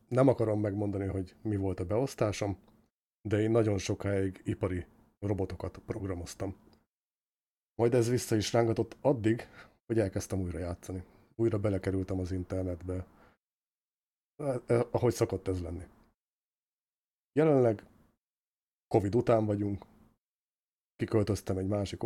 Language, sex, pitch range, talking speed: Hungarian, male, 95-115 Hz, 110 wpm